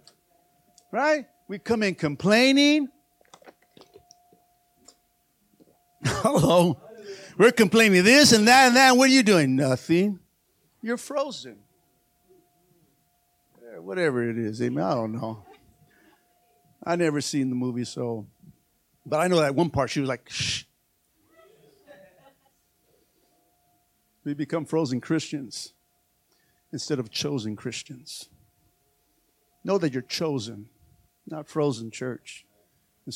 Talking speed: 110 wpm